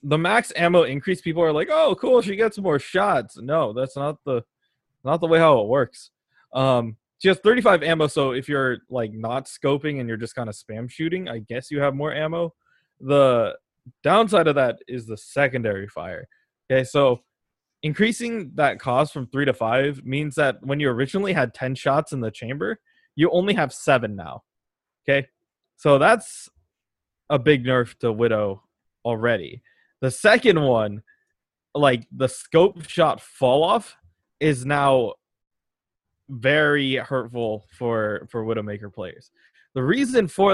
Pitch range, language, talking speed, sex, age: 115-160 Hz, English, 160 wpm, male, 20-39